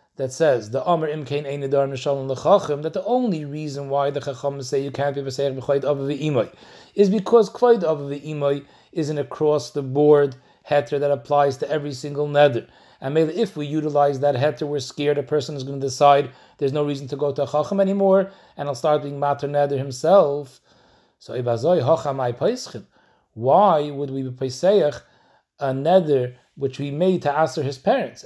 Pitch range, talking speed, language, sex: 140-175 Hz, 165 wpm, English, male